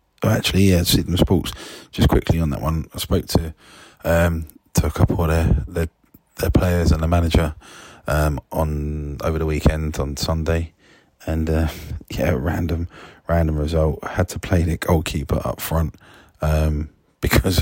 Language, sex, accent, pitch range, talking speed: English, male, British, 75-90 Hz, 160 wpm